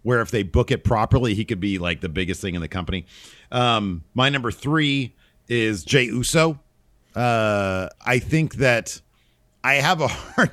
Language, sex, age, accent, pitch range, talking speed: English, male, 40-59, American, 100-140 Hz, 175 wpm